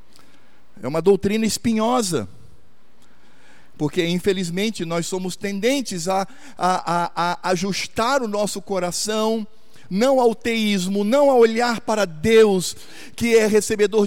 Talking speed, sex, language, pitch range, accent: 120 wpm, male, Portuguese, 155-235 Hz, Brazilian